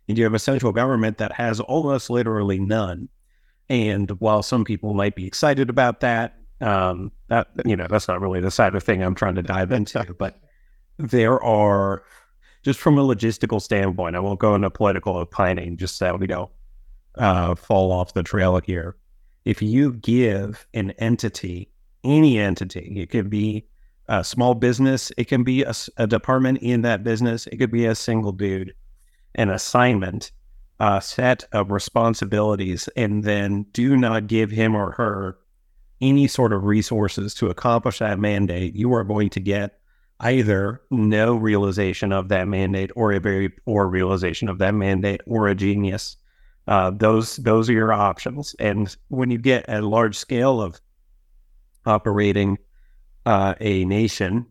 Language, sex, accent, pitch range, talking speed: English, male, American, 95-115 Hz, 165 wpm